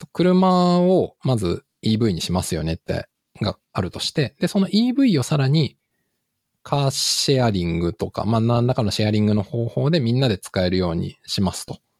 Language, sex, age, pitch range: Japanese, male, 20-39, 105-155 Hz